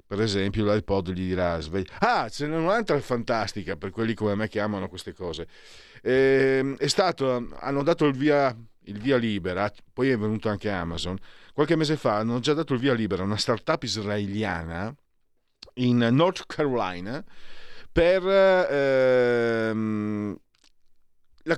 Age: 50-69